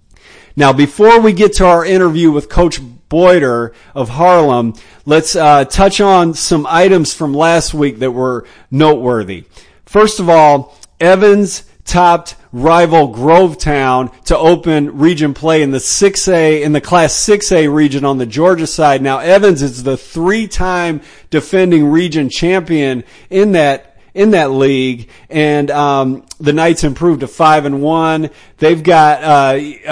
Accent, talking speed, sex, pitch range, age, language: American, 145 wpm, male, 135-175 Hz, 40-59, English